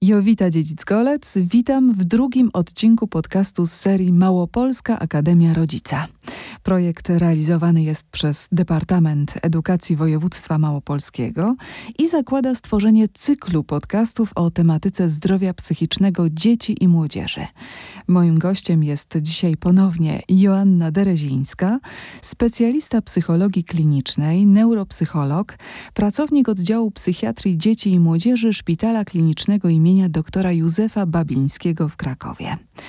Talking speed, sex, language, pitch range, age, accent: 105 wpm, female, Polish, 165-220 Hz, 30-49, native